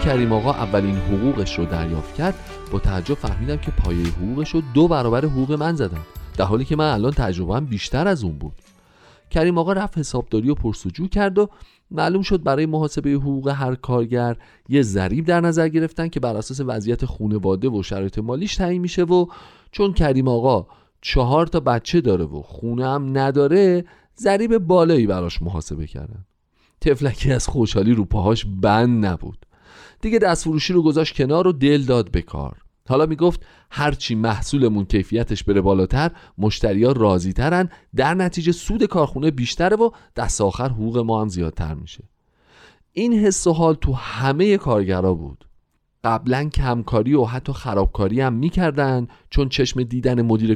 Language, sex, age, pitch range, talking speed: Persian, male, 40-59, 100-160 Hz, 160 wpm